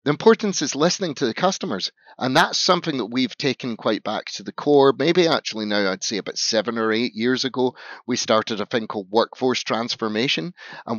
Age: 30-49